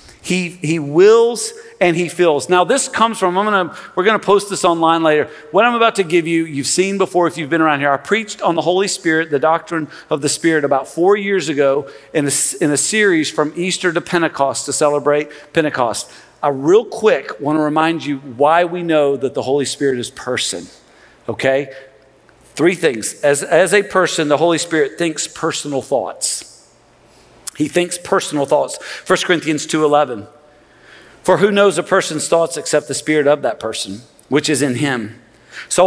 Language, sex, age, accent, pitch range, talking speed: English, male, 50-69, American, 150-200 Hz, 185 wpm